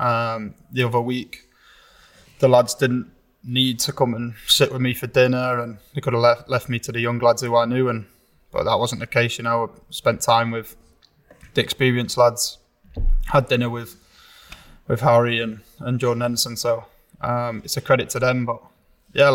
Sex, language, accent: male, English, British